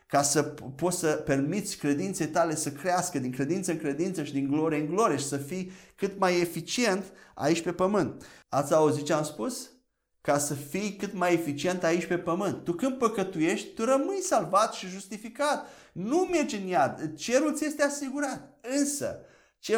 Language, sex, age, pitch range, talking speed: Romanian, male, 30-49, 145-190 Hz, 180 wpm